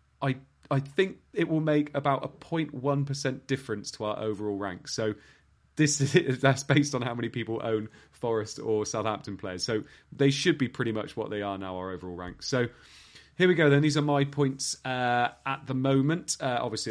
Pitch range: 110-140 Hz